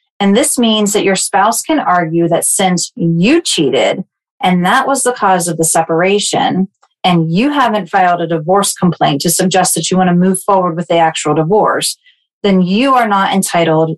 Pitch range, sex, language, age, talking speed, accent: 170-205 Hz, female, English, 30-49, 190 wpm, American